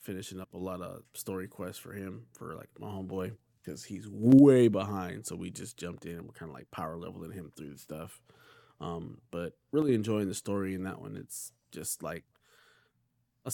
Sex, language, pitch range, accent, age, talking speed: male, English, 95-110 Hz, American, 20-39, 205 wpm